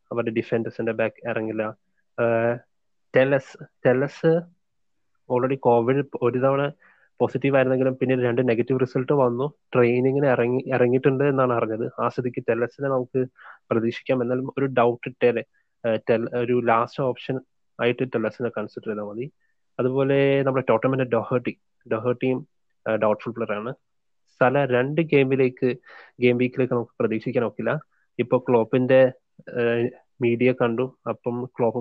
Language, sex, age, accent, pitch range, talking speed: Malayalam, male, 20-39, native, 115-130 Hz, 110 wpm